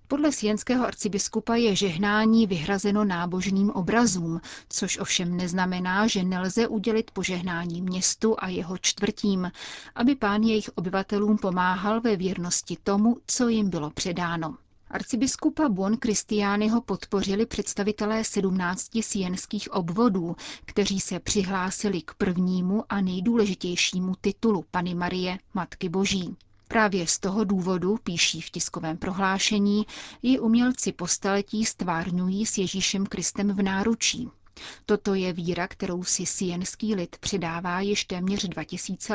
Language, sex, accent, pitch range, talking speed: Czech, female, native, 185-220 Hz, 125 wpm